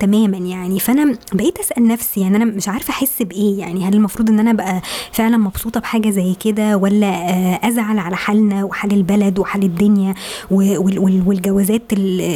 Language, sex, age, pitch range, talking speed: Arabic, male, 20-39, 200-245 Hz, 155 wpm